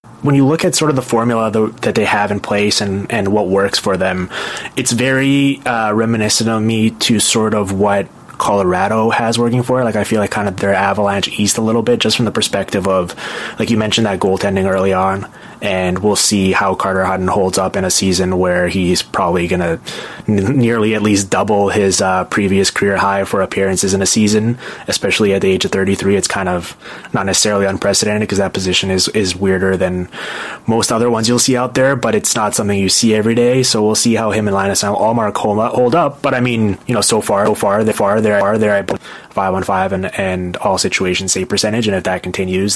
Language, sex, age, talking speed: English, male, 20-39, 215 wpm